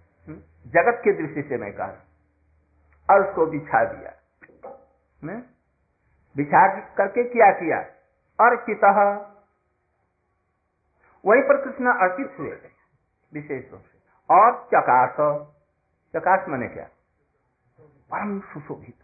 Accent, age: native, 60-79